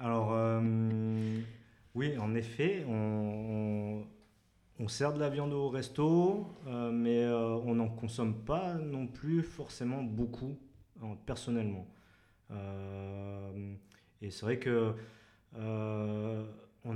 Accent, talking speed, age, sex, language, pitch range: French, 115 wpm, 30-49, male, French, 100-115 Hz